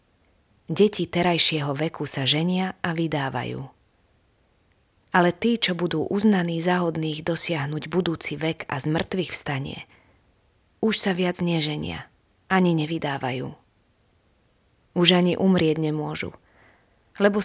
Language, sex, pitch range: Slovak, female, 140-195 Hz